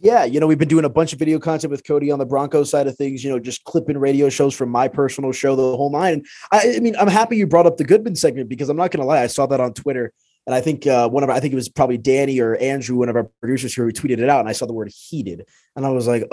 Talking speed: 325 wpm